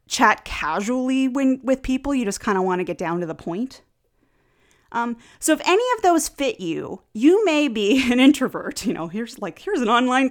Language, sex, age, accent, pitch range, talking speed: English, female, 30-49, American, 215-300 Hz, 210 wpm